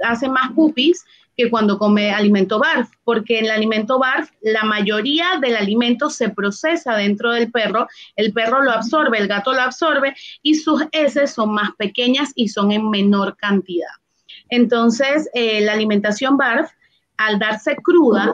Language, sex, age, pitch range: Spanish, female, 30-49, 210-260 Hz